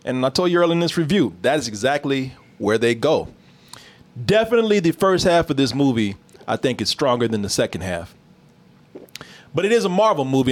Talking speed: 200 wpm